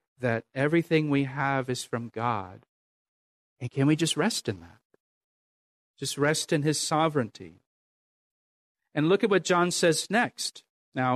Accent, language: American, English